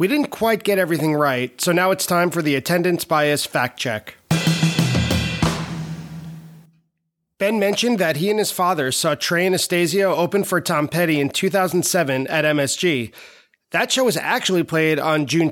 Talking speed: 160 wpm